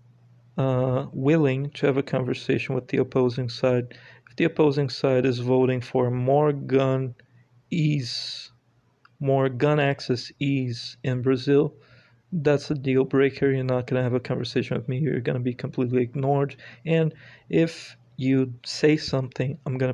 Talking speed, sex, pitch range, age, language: 155 wpm, male, 125-140 Hz, 40-59, English